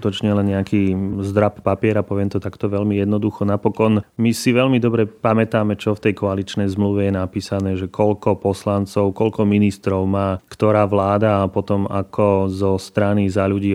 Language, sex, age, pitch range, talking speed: Slovak, male, 30-49, 100-110 Hz, 165 wpm